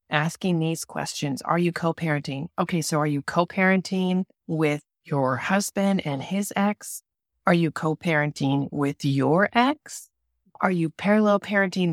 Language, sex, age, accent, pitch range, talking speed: English, female, 30-49, American, 150-185 Hz, 135 wpm